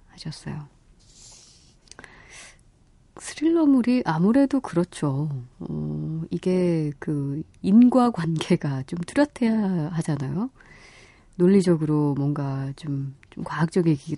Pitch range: 145-200 Hz